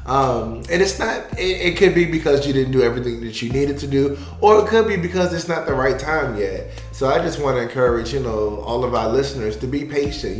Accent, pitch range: American, 115-140 Hz